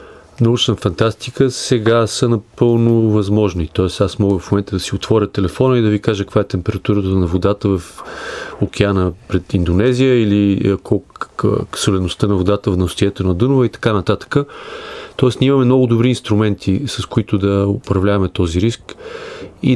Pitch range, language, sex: 95-115 Hz, Bulgarian, male